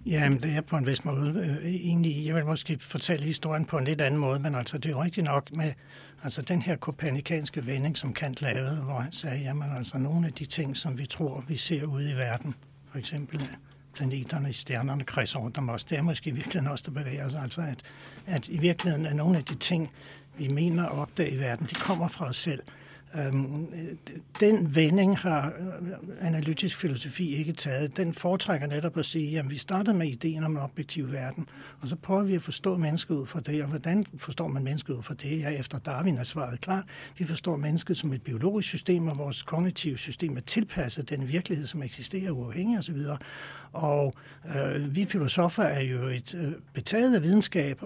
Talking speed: 205 wpm